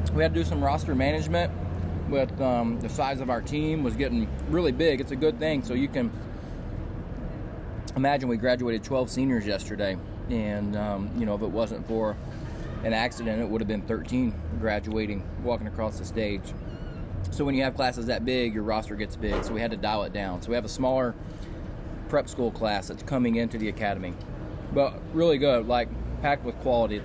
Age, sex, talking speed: 20-39, male, 200 wpm